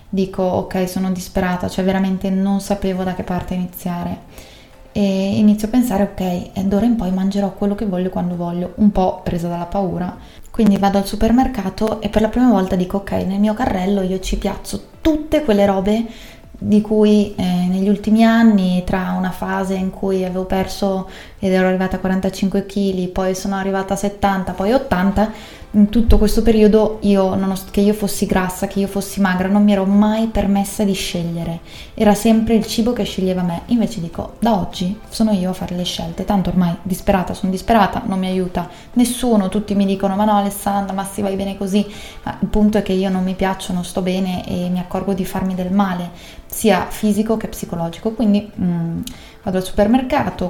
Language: Italian